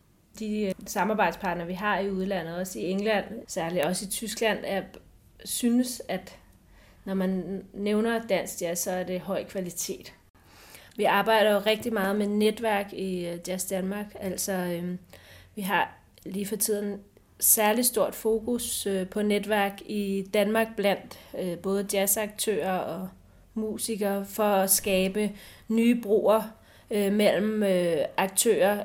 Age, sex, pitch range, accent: 30-49, female, 185-210 Hz, native